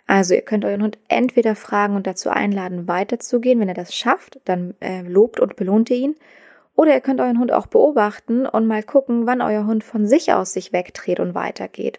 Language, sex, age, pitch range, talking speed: German, female, 20-39, 210-235 Hz, 210 wpm